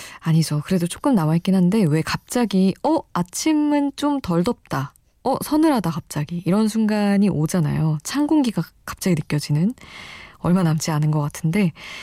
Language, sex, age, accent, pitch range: Korean, female, 20-39, native, 155-200 Hz